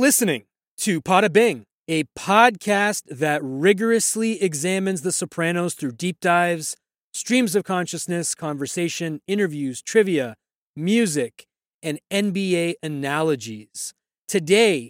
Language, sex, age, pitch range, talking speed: English, male, 30-49, 145-200 Hz, 100 wpm